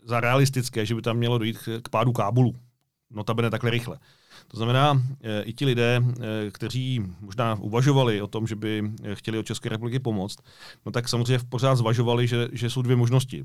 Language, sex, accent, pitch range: Czech, male, native, 110-125 Hz